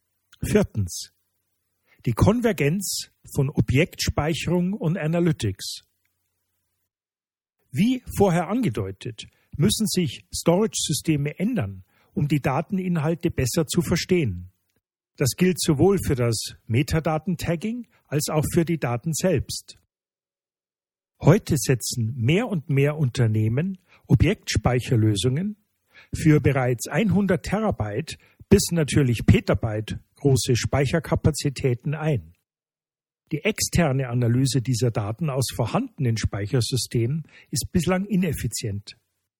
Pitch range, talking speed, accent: 115-170 Hz, 90 wpm, German